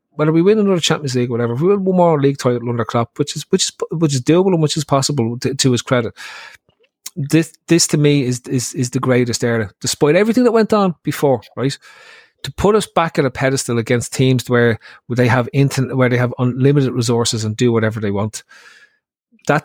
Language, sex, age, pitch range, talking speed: English, male, 30-49, 120-160 Hz, 225 wpm